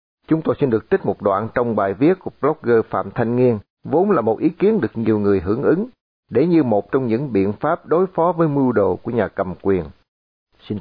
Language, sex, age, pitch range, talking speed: Vietnamese, male, 60-79, 110-155 Hz, 235 wpm